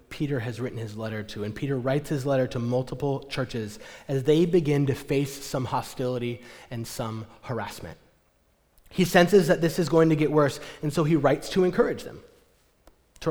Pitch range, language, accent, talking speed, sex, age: 125-175 Hz, English, American, 185 wpm, male, 30-49